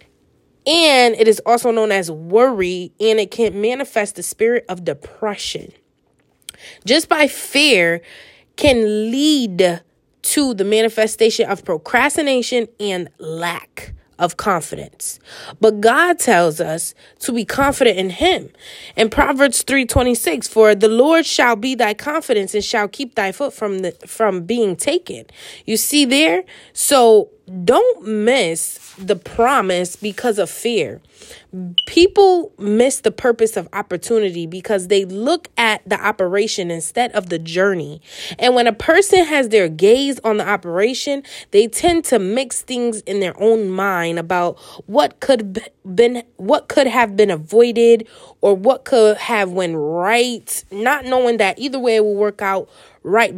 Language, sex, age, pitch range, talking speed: English, female, 20-39, 195-255 Hz, 145 wpm